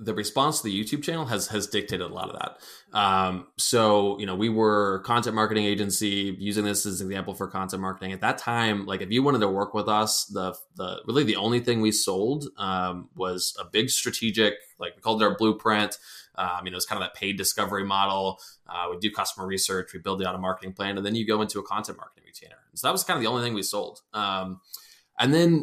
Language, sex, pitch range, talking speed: English, male, 95-110 Hz, 250 wpm